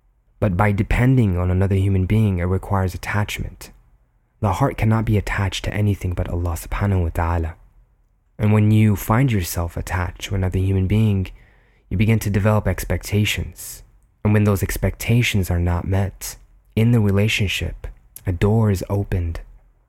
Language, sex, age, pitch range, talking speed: English, male, 20-39, 95-110 Hz, 155 wpm